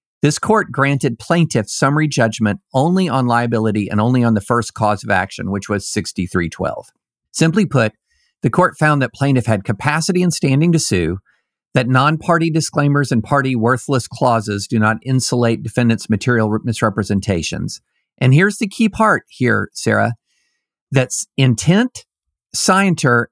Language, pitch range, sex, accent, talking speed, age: English, 110-155 Hz, male, American, 145 wpm, 50-69